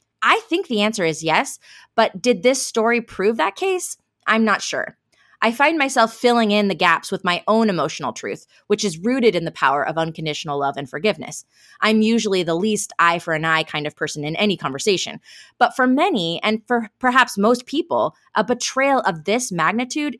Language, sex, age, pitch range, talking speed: English, female, 20-39, 165-235 Hz, 185 wpm